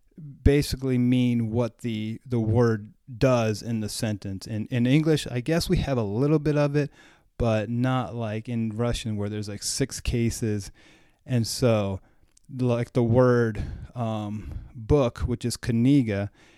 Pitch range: 105-125 Hz